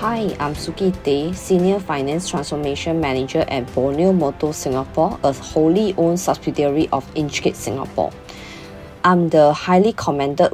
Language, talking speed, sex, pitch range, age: English, 130 wpm, female, 140-170 Hz, 20-39